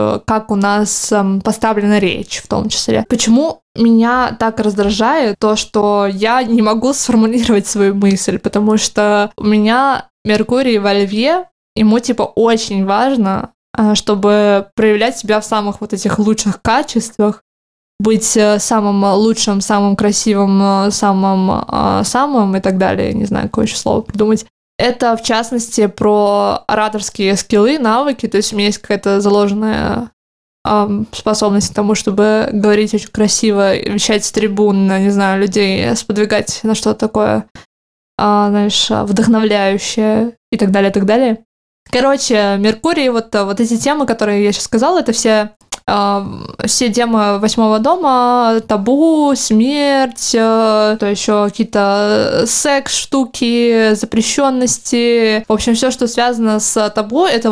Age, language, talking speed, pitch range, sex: 20-39, Russian, 130 wpm, 205-230 Hz, female